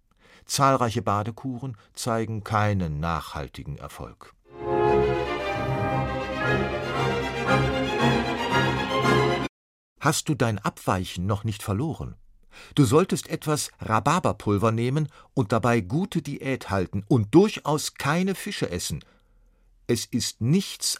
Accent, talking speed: German, 90 wpm